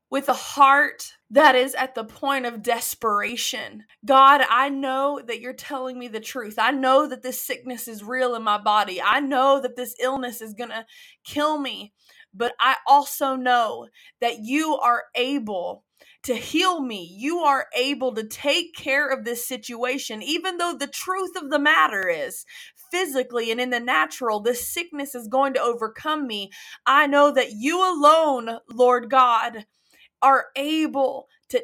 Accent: American